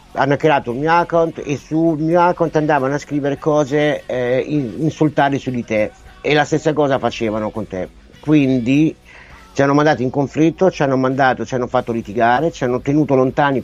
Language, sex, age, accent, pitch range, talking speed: Italian, male, 50-69, native, 115-150 Hz, 185 wpm